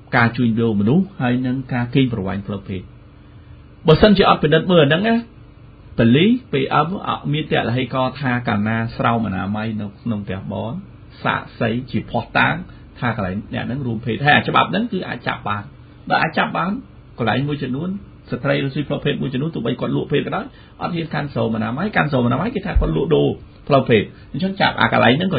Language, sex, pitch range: English, male, 115-160 Hz